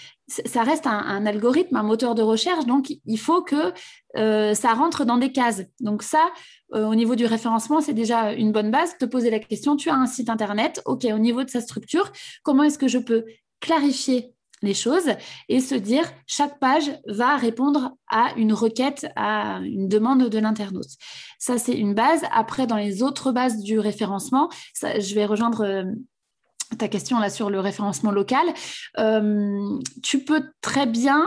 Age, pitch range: 20-39, 220-285 Hz